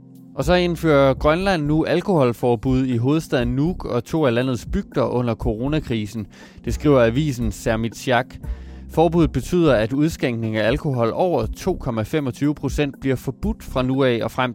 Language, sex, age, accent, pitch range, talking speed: Danish, male, 20-39, native, 115-150 Hz, 155 wpm